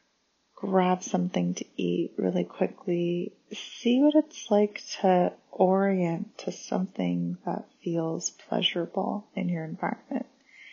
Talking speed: 110 wpm